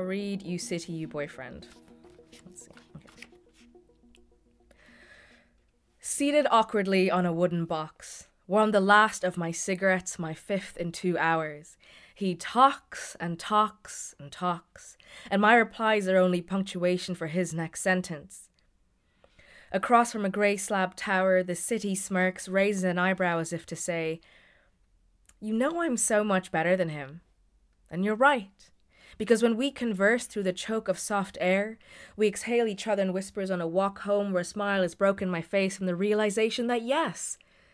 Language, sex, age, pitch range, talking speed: English, female, 20-39, 175-210 Hz, 155 wpm